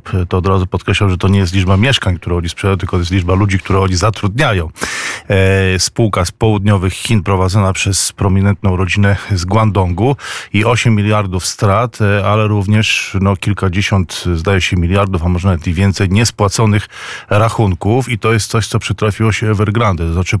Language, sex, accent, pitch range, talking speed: Polish, male, native, 95-105 Hz, 170 wpm